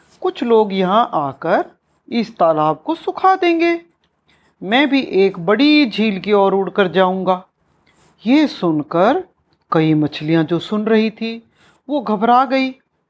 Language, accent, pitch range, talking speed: Hindi, native, 180-290 Hz, 135 wpm